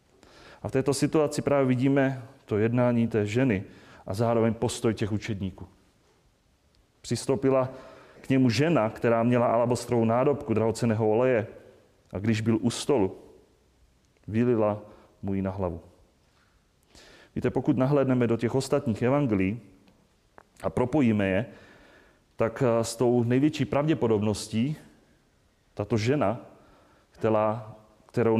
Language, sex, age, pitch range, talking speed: Czech, male, 30-49, 100-125 Hz, 110 wpm